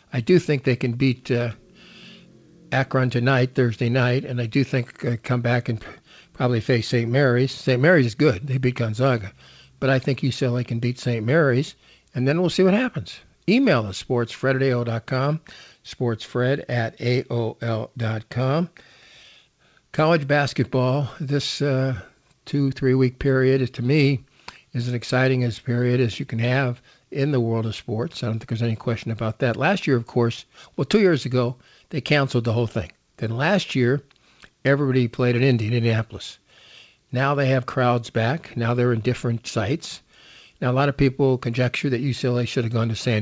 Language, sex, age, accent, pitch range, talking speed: English, male, 50-69, American, 115-135 Hz, 180 wpm